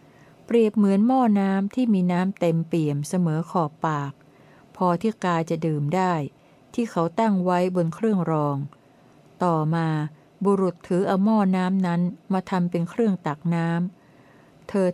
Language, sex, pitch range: Thai, female, 160-205 Hz